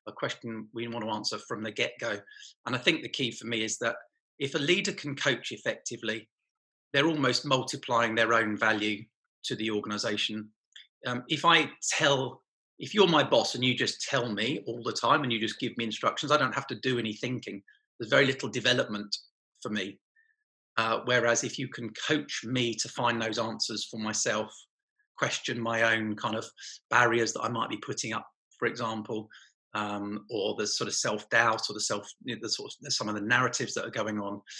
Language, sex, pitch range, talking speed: English, male, 105-125 Hz, 205 wpm